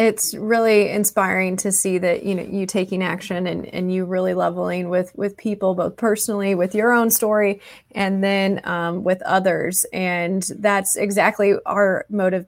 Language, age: English, 20-39